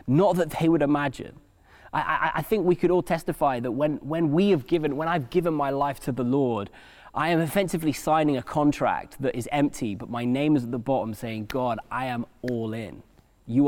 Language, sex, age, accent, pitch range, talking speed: English, male, 20-39, British, 125-160 Hz, 220 wpm